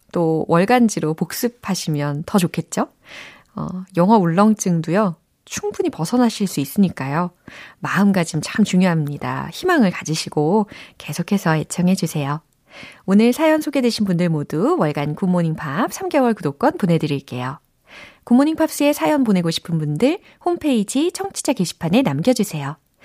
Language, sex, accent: Korean, female, native